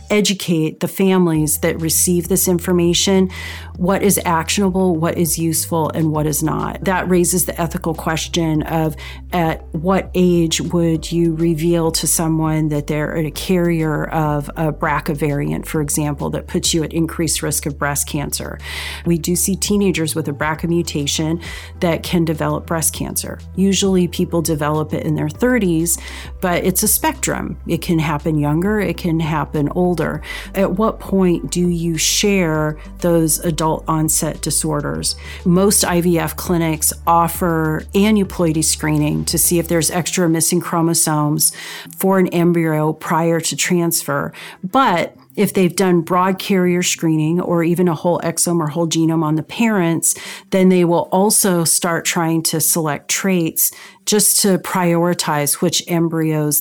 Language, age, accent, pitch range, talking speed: English, 40-59, American, 160-180 Hz, 150 wpm